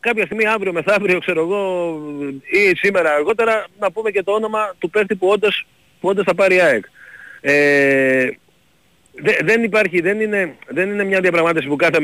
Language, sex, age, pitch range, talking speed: Greek, male, 40-59, 145-200 Hz, 175 wpm